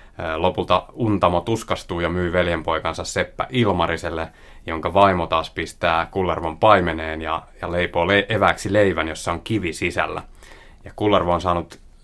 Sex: male